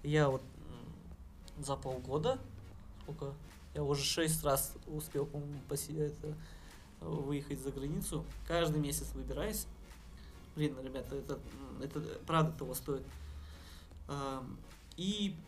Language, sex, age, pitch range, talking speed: Russian, male, 20-39, 140-160 Hz, 95 wpm